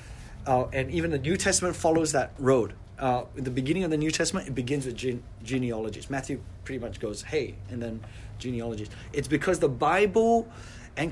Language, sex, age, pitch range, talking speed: English, male, 30-49, 105-140 Hz, 185 wpm